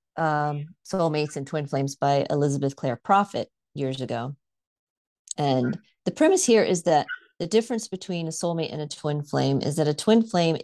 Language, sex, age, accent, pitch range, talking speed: English, female, 30-49, American, 140-180 Hz, 175 wpm